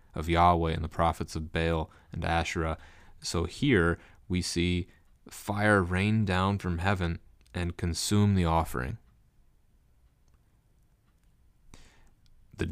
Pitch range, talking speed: 80-95 Hz, 110 wpm